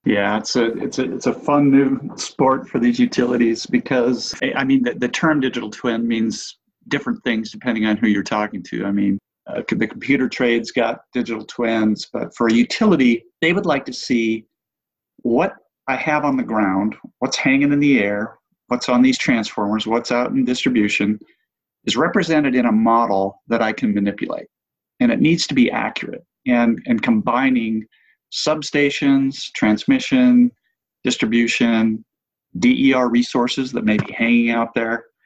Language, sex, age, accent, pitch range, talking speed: English, male, 50-69, American, 110-175 Hz, 165 wpm